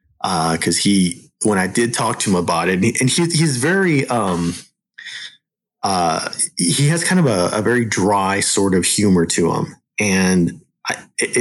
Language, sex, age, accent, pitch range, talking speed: English, male, 30-49, American, 95-125 Hz, 180 wpm